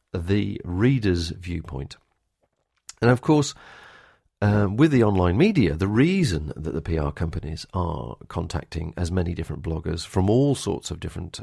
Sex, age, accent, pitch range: male, 40-59, British, 85-115 Hz